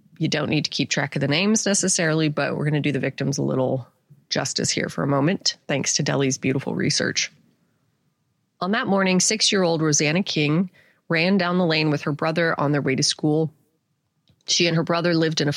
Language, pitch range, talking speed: English, 145-175 Hz, 210 wpm